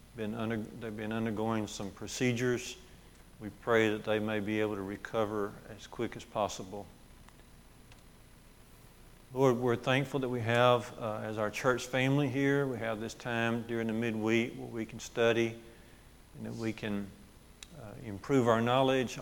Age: 50-69